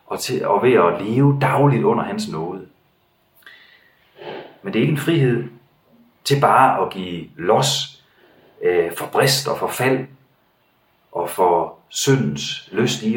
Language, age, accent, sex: Danish, 30-49, native, male